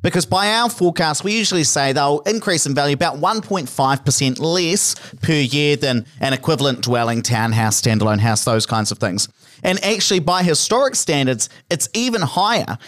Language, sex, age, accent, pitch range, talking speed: English, male, 40-59, Australian, 130-170 Hz, 165 wpm